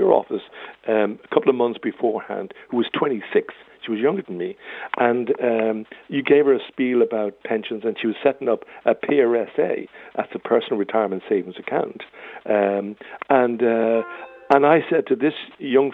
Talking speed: 175 wpm